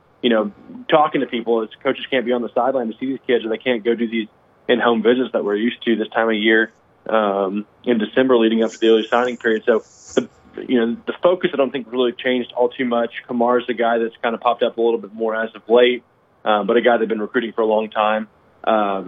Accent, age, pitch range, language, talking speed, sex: American, 20-39, 110-125 Hz, English, 260 wpm, male